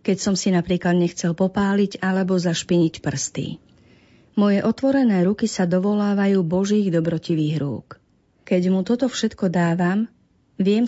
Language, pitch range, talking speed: Slovak, 170-200 Hz, 125 wpm